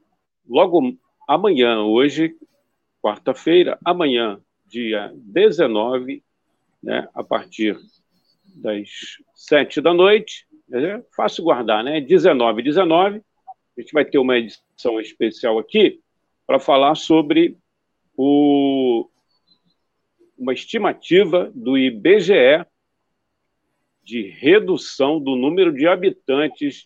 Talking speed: 95 wpm